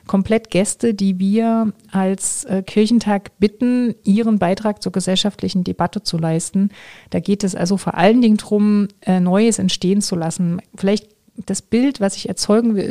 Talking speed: 160 wpm